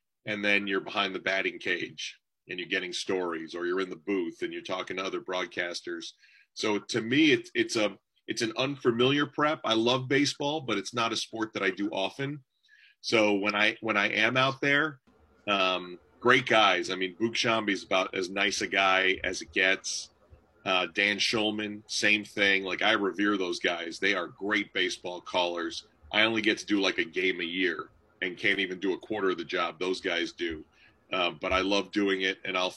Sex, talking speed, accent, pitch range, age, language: male, 205 wpm, American, 95-125 Hz, 40-59, English